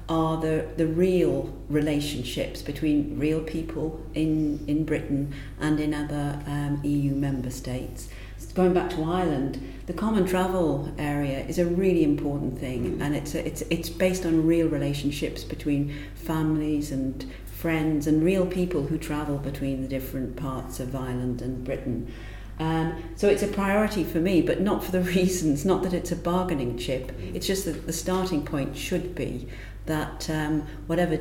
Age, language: 40-59, English